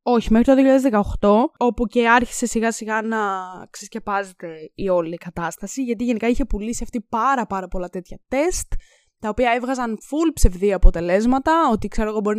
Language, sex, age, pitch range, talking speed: Greek, female, 20-39, 200-270 Hz, 170 wpm